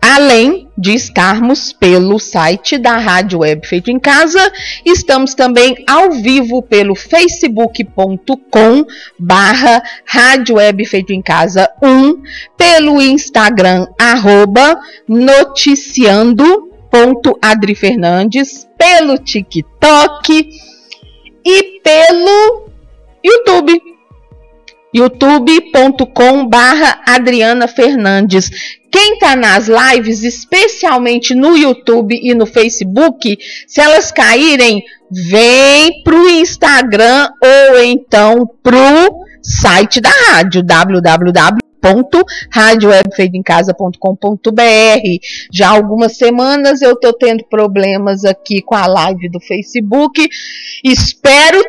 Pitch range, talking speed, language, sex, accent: 205-290 Hz, 80 wpm, Portuguese, female, Brazilian